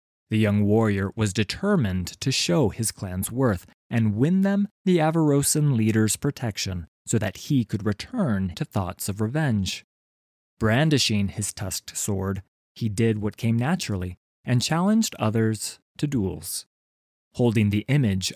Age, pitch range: 30-49, 95-135 Hz